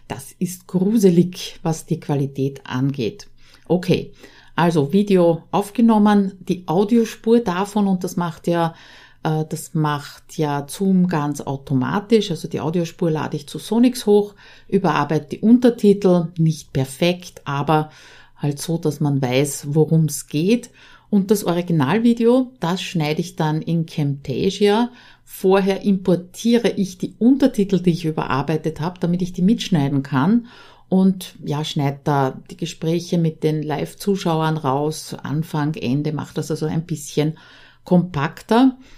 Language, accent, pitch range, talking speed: German, Austrian, 155-195 Hz, 135 wpm